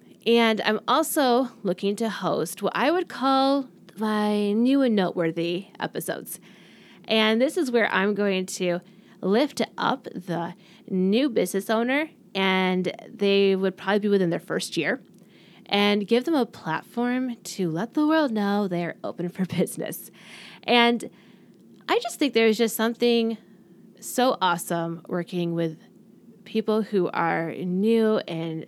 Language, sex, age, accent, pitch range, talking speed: English, female, 20-39, American, 180-230 Hz, 140 wpm